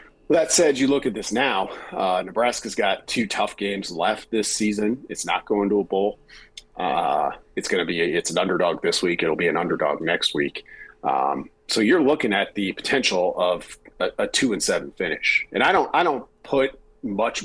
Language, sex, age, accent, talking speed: English, male, 40-59, American, 205 wpm